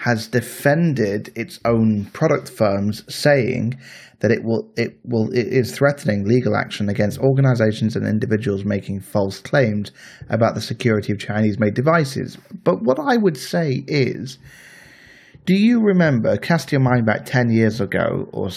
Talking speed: 150 wpm